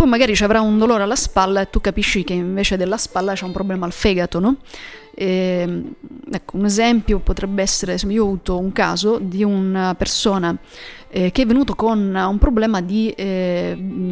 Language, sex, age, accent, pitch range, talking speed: English, female, 30-49, Italian, 185-225 Hz, 170 wpm